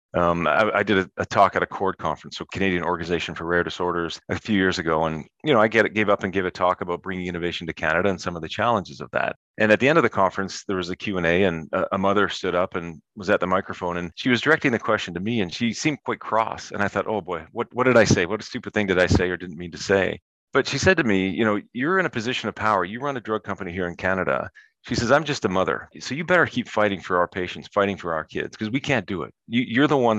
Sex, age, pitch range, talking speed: male, 40-59, 90-105 Hz, 295 wpm